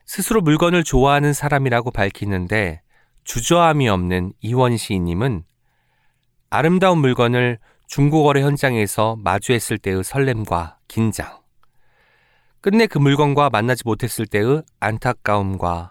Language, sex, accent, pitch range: Korean, male, native, 100-140 Hz